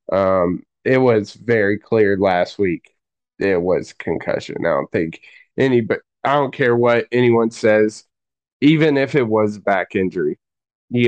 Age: 20-39